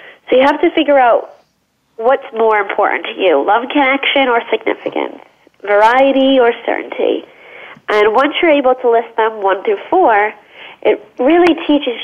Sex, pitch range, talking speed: female, 205-275 Hz, 155 wpm